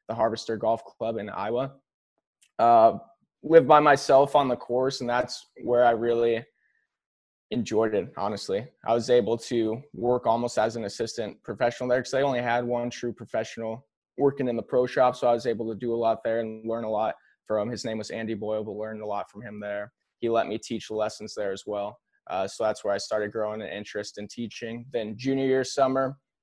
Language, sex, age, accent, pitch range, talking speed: English, male, 20-39, American, 115-130 Hz, 215 wpm